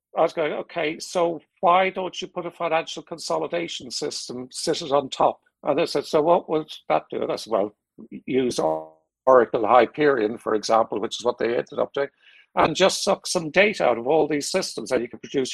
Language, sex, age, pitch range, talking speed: English, male, 60-79, 135-170 Hz, 210 wpm